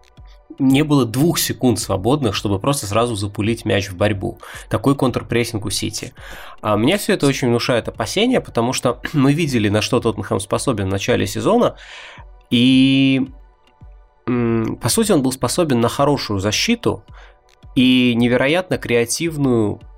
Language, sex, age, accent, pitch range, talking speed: Russian, male, 20-39, native, 110-140 Hz, 140 wpm